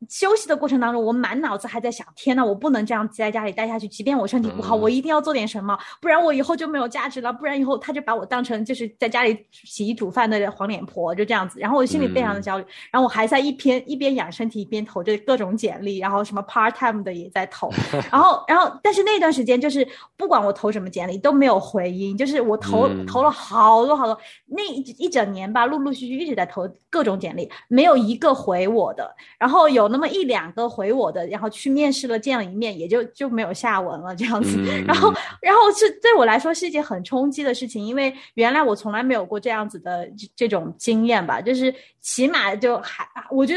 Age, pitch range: 20-39, 205-270 Hz